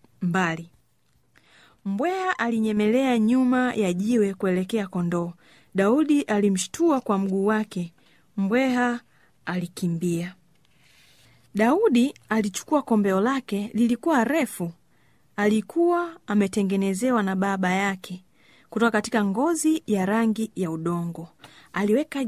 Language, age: Swahili, 30-49